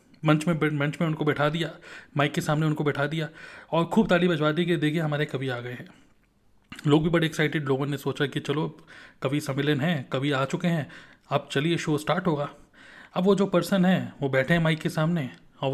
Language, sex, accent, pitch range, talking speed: Hindi, male, native, 145-175 Hz, 220 wpm